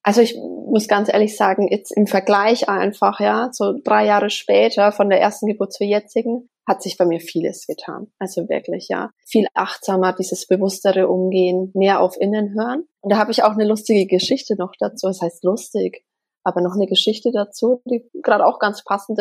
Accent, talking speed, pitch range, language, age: German, 195 wpm, 185-225 Hz, German, 20-39